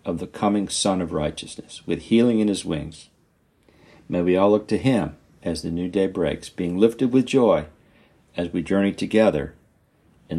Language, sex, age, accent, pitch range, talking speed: English, male, 50-69, American, 85-115 Hz, 180 wpm